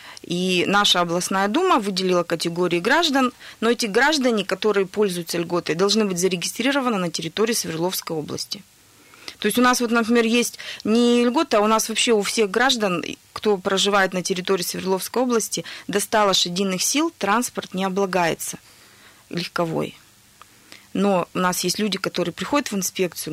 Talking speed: 150 wpm